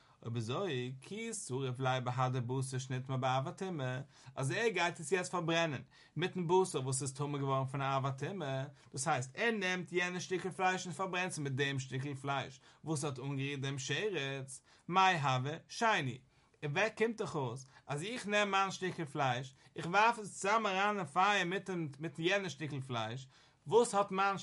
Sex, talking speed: male, 140 wpm